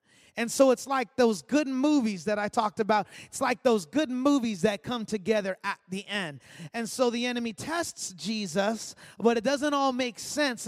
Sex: male